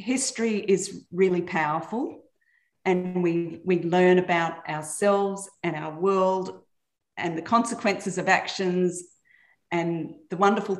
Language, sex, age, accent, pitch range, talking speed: English, female, 40-59, Australian, 170-210 Hz, 115 wpm